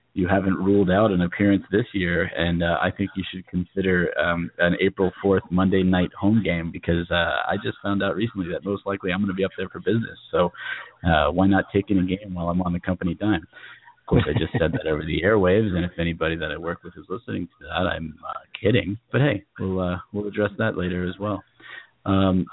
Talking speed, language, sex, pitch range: 235 wpm, English, male, 90-100 Hz